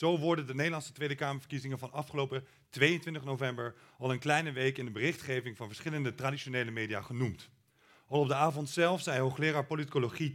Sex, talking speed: male, 175 wpm